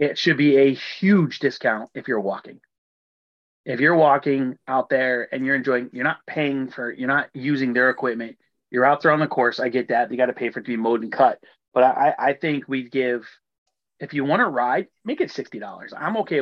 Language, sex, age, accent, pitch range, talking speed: English, male, 30-49, American, 120-145 Hz, 225 wpm